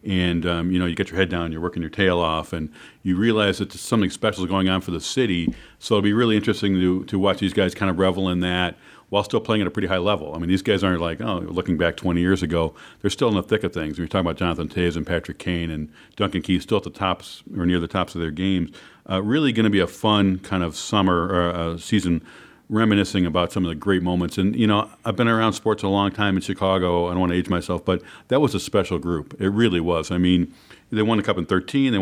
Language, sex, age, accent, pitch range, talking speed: English, male, 40-59, American, 90-100 Hz, 275 wpm